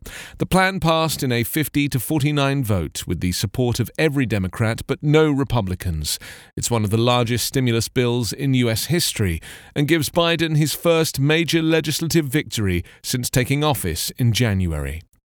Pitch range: 110-155 Hz